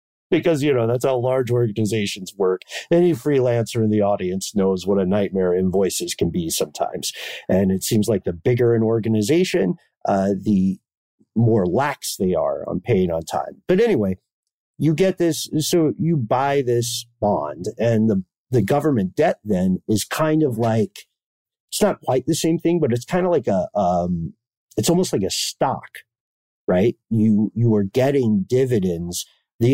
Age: 50-69